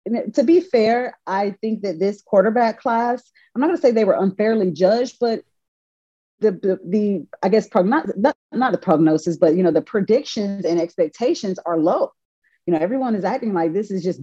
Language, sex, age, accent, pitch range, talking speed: English, female, 30-49, American, 170-215 Hz, 205 wpm